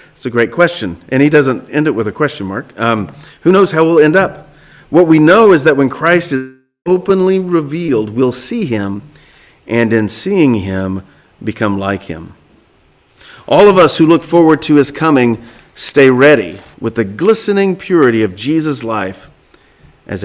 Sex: male